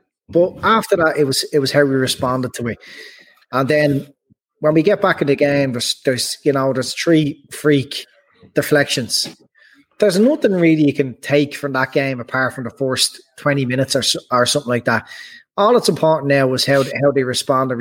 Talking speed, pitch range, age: 200 wpm, 130-160 Hz, 30-49